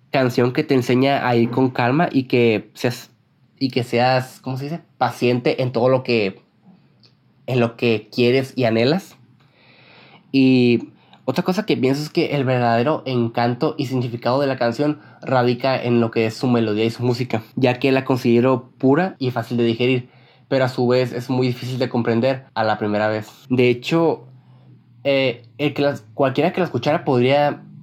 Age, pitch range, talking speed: 20-39, 115-135 Hz, 185 wpm